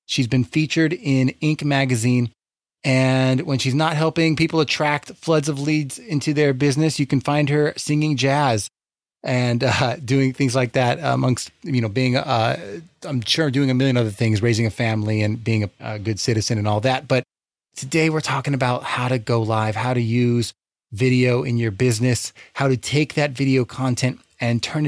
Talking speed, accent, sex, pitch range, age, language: 190 wpm, American, male, 120-145 Hz, 30-49, English